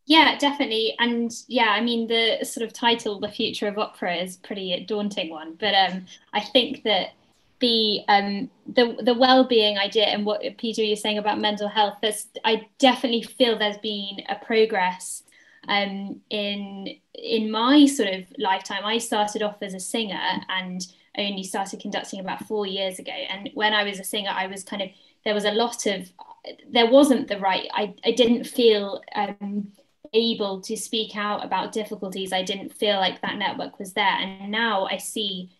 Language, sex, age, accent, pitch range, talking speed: English, female, 10-29, British, 195-230 Hz, 185 wpm